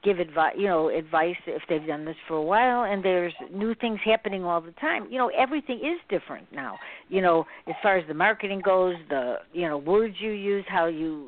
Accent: American